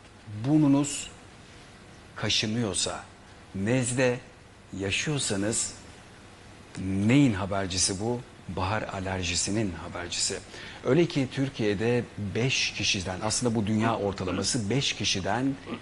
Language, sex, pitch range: Turkish, male, 100-125 Hz